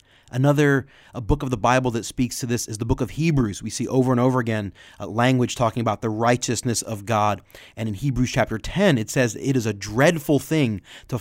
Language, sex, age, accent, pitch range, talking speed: English, male, 30-49, American, 110-135 Hz, 225 wpm